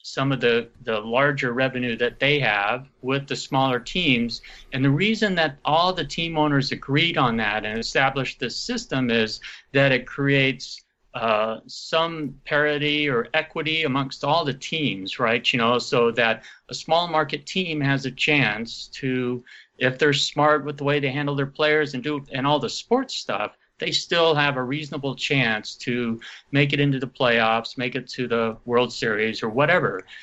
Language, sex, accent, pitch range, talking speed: English, male, American, 125-150 Hz, 180 wpm